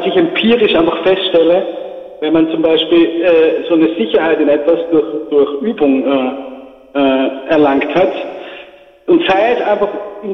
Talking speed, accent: 150 wpm, German